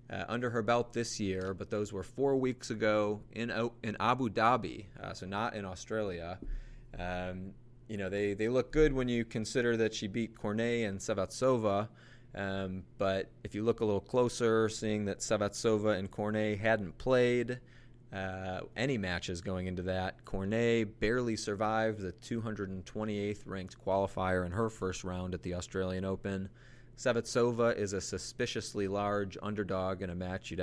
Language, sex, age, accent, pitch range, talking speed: English, male, 30-49, American, 95-115 Hz, 160 wpm